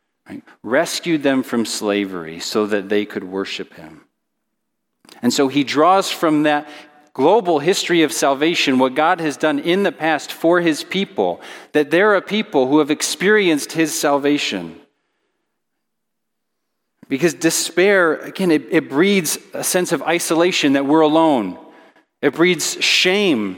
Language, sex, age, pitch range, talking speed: English, male, 40-59, 140-175 Hz, 145 wpm